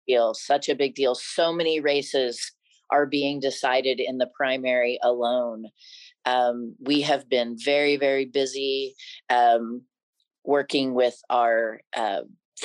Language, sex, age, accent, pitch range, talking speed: English, female, 40-59, American, 125-150 Hz, 130 wpm